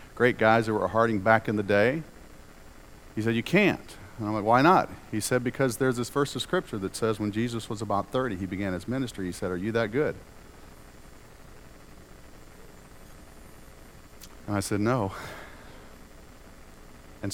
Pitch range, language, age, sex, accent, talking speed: 85-115 Hz, English, 50-69, male, American, 165 wpm